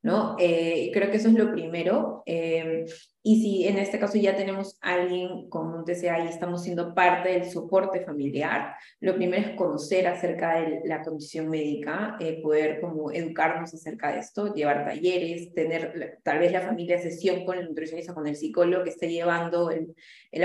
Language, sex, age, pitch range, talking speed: Spanish, female, 20-39, 165-210 Hz, 185 wpm